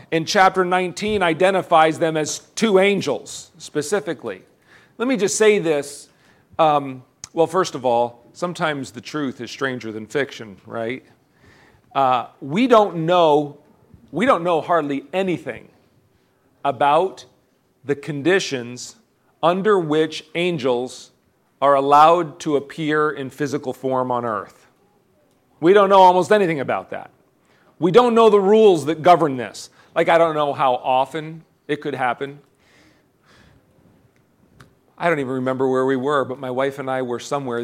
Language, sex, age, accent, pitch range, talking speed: English, male, 40-59, American, 125-170 Hz, 140 wpm